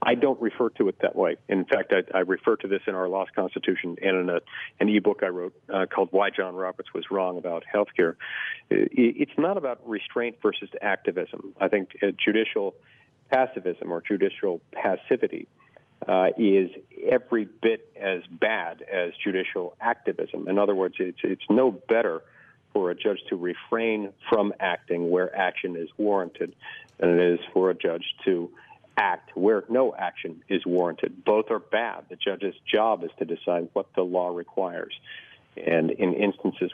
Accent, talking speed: American, 170 wpm